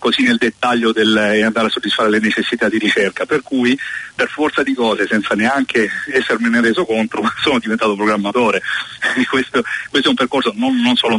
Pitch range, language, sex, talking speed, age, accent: 105-125 Hz, Italian, male, 180 wpm, 40-59, native